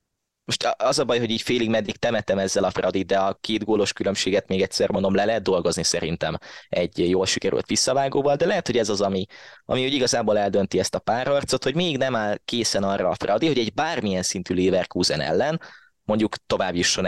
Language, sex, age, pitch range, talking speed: Hungarian, male, 20-39, 100-125 Hz, 205 wpm